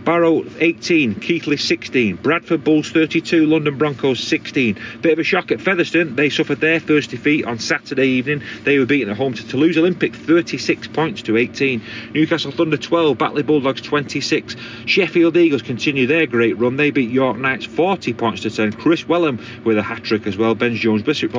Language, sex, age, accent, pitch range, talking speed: English, male, 30-49, British, 110-150 Hz, 185 wpm